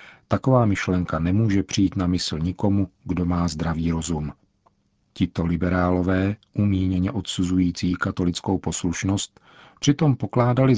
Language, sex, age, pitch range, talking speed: Czech, male, 50-69, 85-100 Hz, 105 wpm